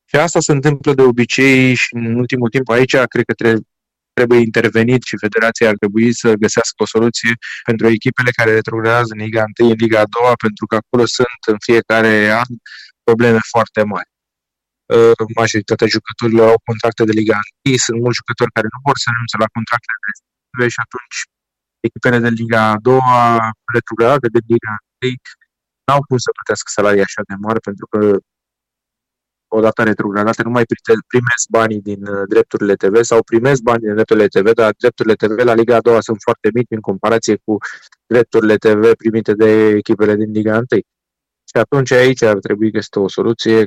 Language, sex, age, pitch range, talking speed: Romanian, male, 20-39, 110-120 Hz, 180 wpm